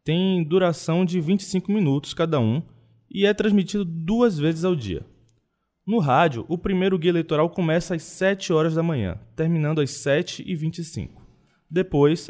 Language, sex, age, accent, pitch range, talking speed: Portuguese, male, 20-39, Brazilian, 125-180 Hz, 145 wpm